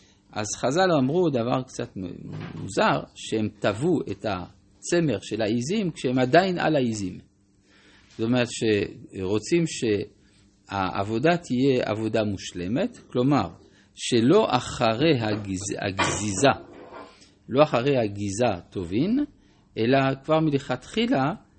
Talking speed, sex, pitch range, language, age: 90 wpm, male, 100-145 Hz, Hebrew, 50-69